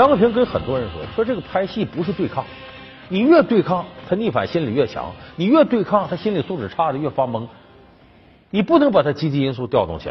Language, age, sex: Chinese, 50-69, male